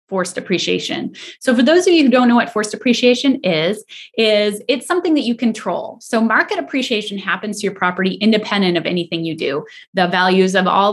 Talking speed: 200 wpm